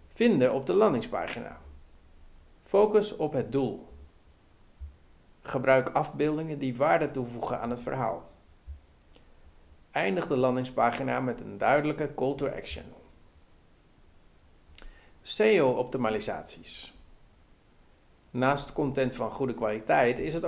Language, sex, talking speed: Dutch, male, 95 wpm